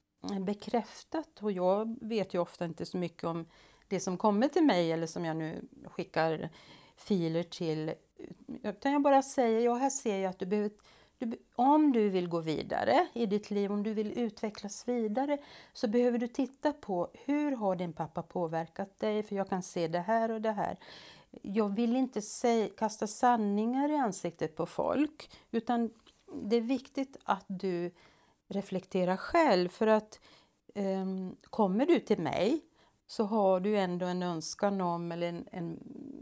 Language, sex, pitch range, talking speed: Swedish, female, 170-240 Hz, 165 wpm